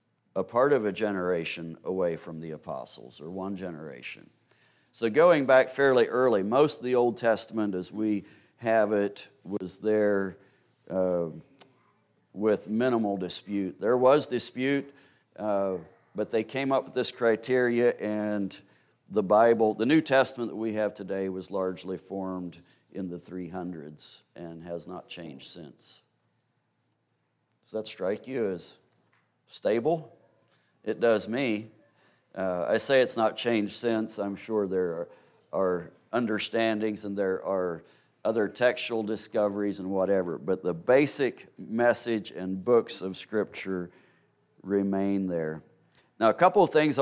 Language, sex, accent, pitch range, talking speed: English, male, American, 95-115 Hz, 140 wpm